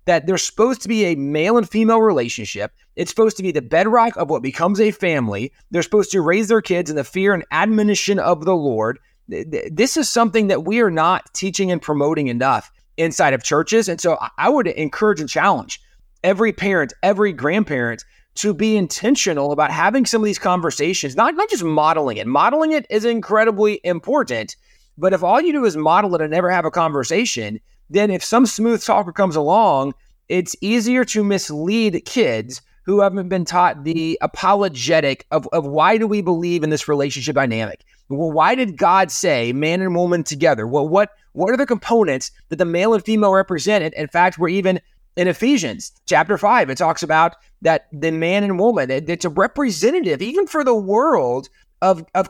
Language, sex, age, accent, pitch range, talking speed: English, male, 30-49, American, 155-215 Hz, 190 wpm